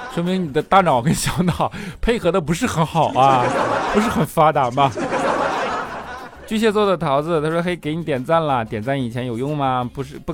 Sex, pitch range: male, 125-170 Hz